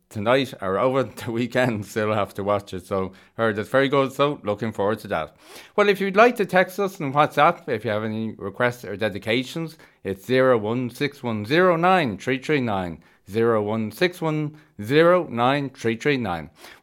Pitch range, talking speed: 110-150 Hz, 140 wpm